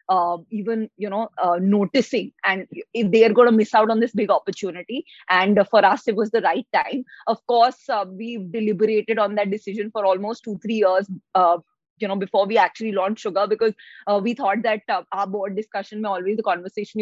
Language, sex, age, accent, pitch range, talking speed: English, female, 20-39, Indian, 205-250 Hz, 215 wpm